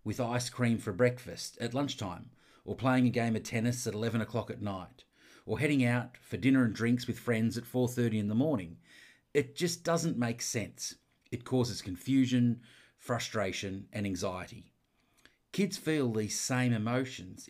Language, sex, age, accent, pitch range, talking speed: English, male, 40-59, Australian, 105-125 Hz, 165 wpm